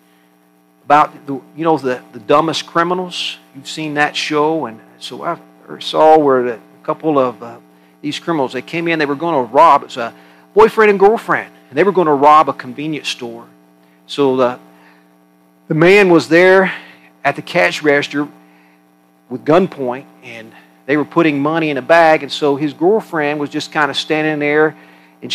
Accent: American